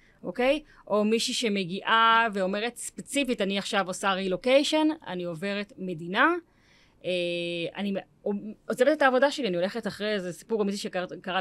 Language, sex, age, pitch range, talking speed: Hebrew, female, 30-49, 185-245 Hz, 140 wpm